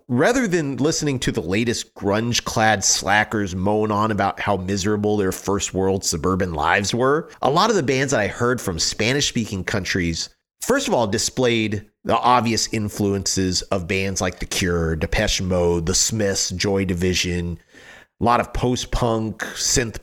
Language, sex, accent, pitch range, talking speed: English, male, American, 90-115 Hz, 160 wpm